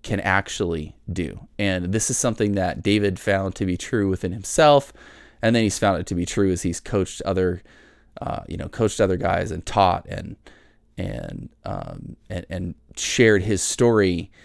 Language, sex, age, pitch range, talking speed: English, male, 20-39, 95-115 Hz, 180 wpm